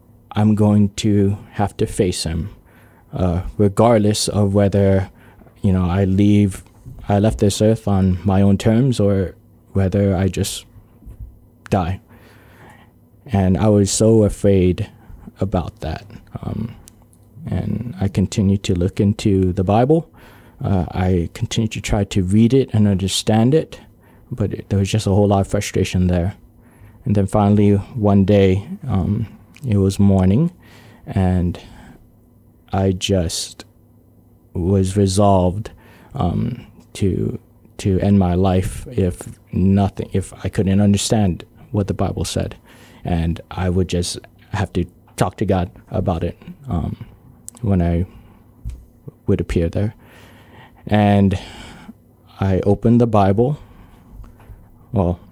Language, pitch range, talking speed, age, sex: English, 95-115 Hz, 130 wpm, 20-39, male